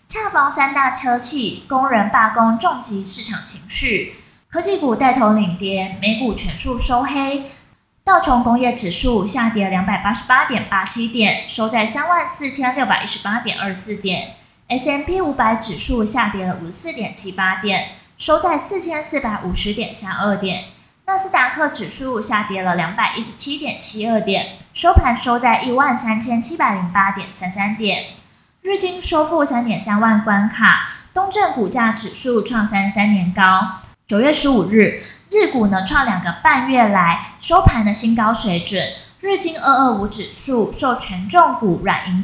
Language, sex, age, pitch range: Chinese, female, 20-39, 200-270 Hz